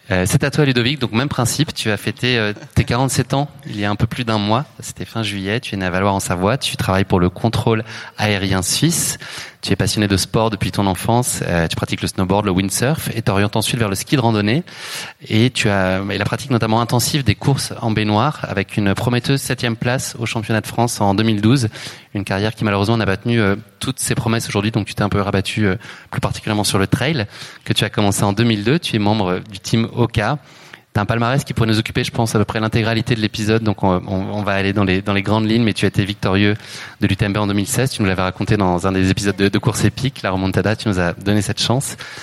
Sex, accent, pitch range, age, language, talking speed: male, French, 100-120 Hz, 20-39, French, 245 wpm